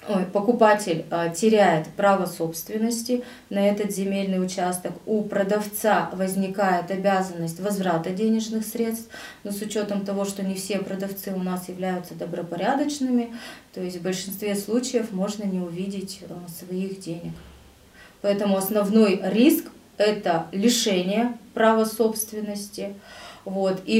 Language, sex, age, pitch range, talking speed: Russian, female, 30-49, 185-215 Hz, 115 wpm